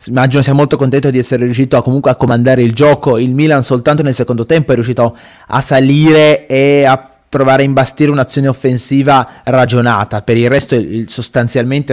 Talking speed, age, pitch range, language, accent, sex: 180 wpm, 20-39, 120-150 Hz, Italian, native, male